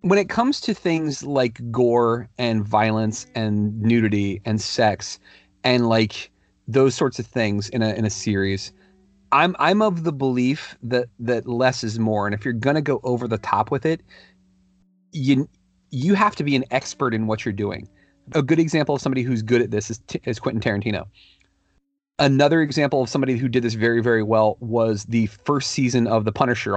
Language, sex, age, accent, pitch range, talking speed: English, male, 30-49, American, 110-140 Hz, 195 wpm